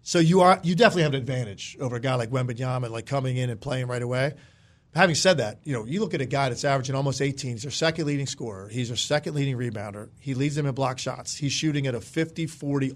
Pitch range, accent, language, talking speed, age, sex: 130-160 Hz, American, English, 265 wpm, 40-59, male